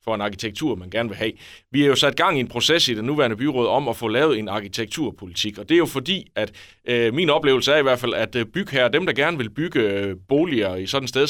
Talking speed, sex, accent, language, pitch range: 275 wpm, male, native, Danish, 105-135 Hz